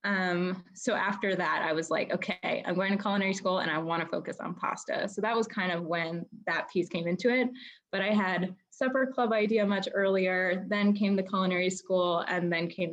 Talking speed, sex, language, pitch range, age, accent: 220 wpm, female, English, 175-205 Hz, 10-29, American